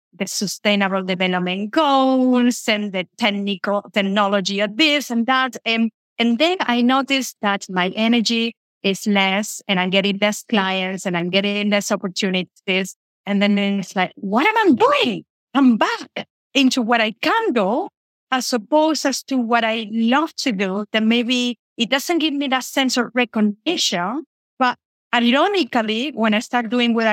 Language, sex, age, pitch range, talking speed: English, female, 30-49, 195-245 Hz, 160 wpm